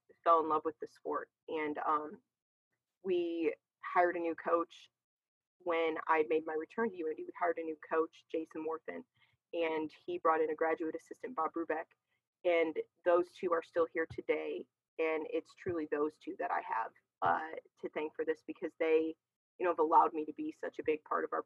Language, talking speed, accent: English, 200 wpm, American